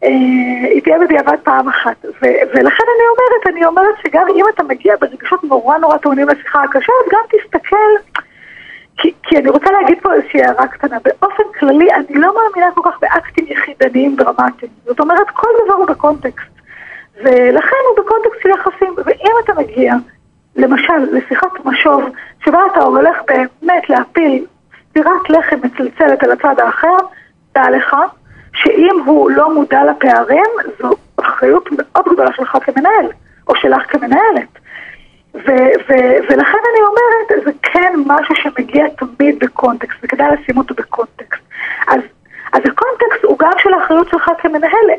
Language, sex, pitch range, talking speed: Hebrew, female, 275-385 Hz, 145 wpm